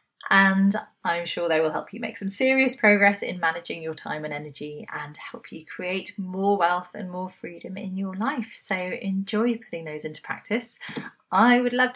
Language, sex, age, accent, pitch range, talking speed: English, female, 30-49, British, 160-225 Hz, 190 wpm